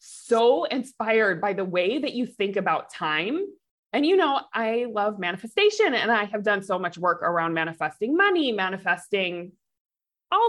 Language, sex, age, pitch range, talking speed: English, female, 20-39, 205-290 Hz, 160 wpm